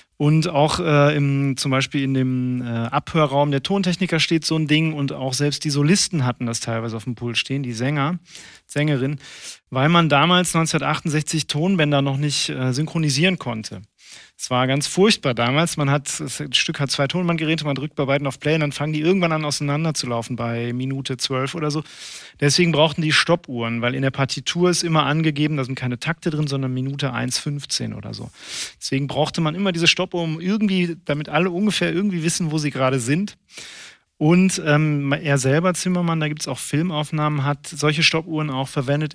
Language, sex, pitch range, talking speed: German, male, 135-160 Hz, 190 wpm